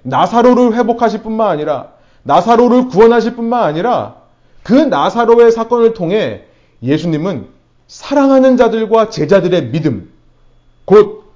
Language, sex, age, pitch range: Korean, male, 30-49, 135-215 Hz